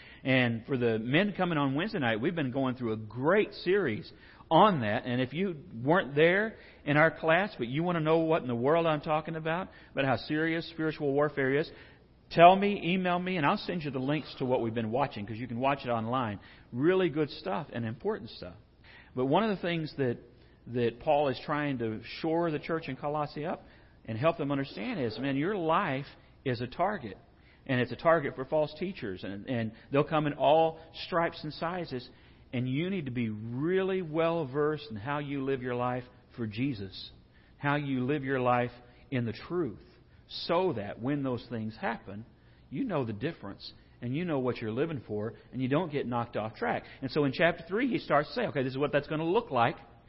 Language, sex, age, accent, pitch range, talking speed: English, male, 50-69, American, 120-160 Hz, 215 wpm